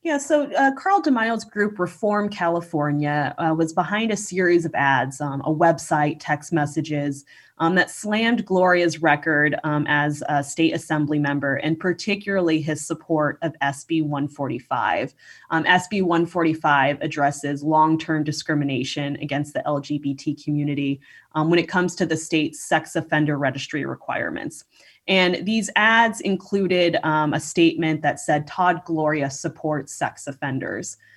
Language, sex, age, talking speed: English, female, 20-39, 140 wpm